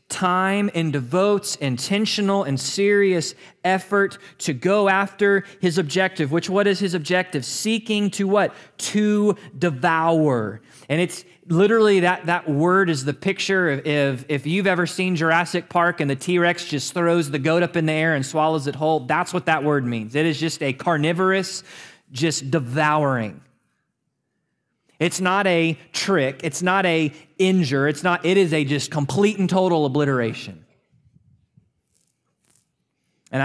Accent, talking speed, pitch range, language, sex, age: American, 150 wpm, 140-185 Hz, English, male, 30-49